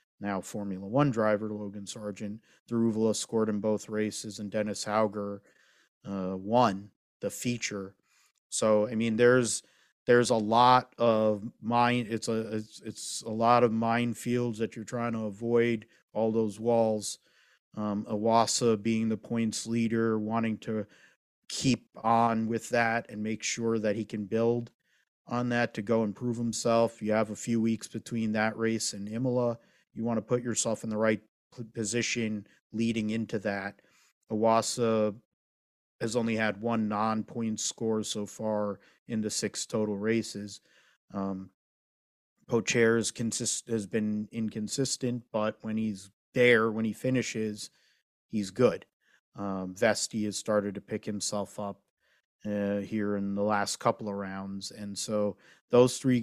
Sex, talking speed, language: male, 150 wpm, English